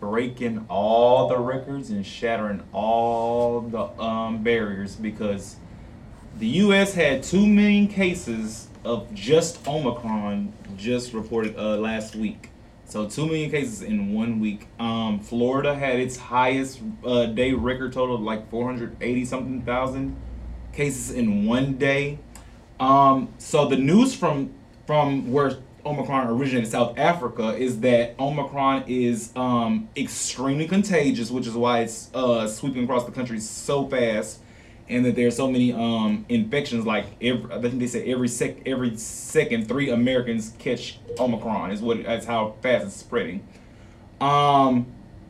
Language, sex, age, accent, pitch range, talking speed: English, male, 20-39, American, 115-135 Hz, 145 wpm